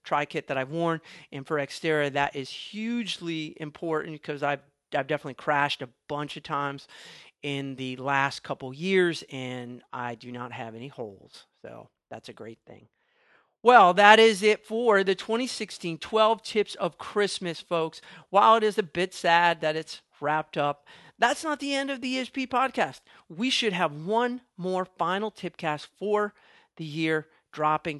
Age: 40-59